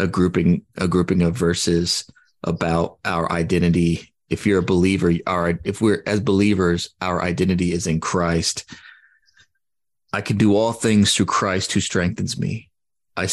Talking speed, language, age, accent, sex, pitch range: 145 wpm, English, 30-49, American, male, 90-105 Hz